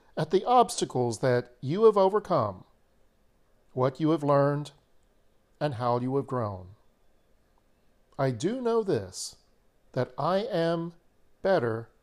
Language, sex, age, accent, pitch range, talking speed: English, male, 50-69, American, 125-205 Hz, 120 wpm